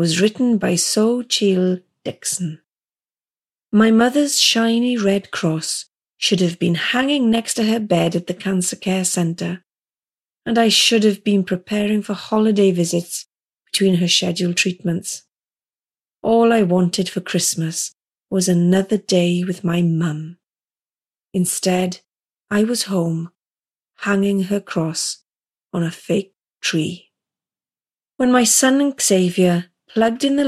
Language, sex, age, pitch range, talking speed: English, female, 30-49, 175-220 Hz, 130 wpm